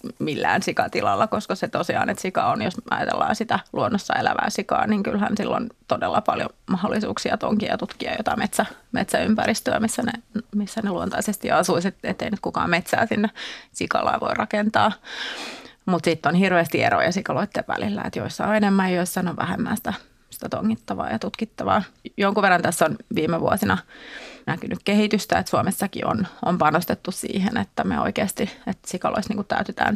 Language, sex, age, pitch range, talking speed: Finnish, female, 30-49, 175-225 Hz, 160 wpm